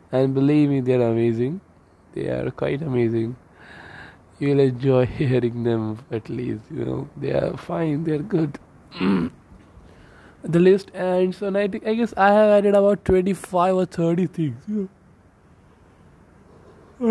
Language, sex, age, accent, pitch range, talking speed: Hindi, male, 20-39, native, 125-160 Hz, 145 wpm